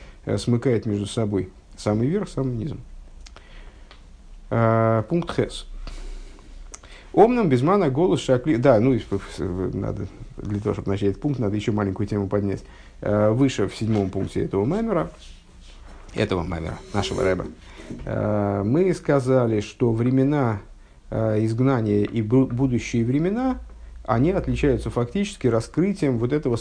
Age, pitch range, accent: 50-69, 100-130 Hz, native